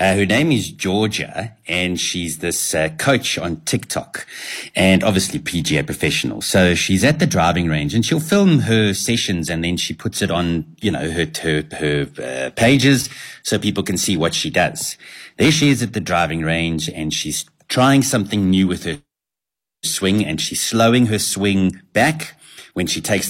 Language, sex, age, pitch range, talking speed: English, male, 30-49, 85-125 Hz, 185 wpm